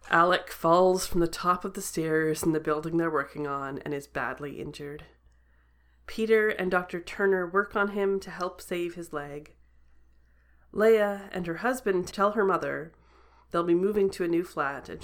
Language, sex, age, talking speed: English, female, 30-49, 180 wpm